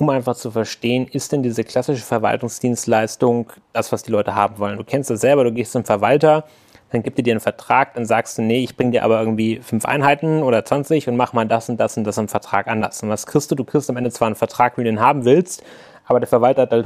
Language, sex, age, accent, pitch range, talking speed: German, male, 30-49, German, 115-140 Hz, 265 wpm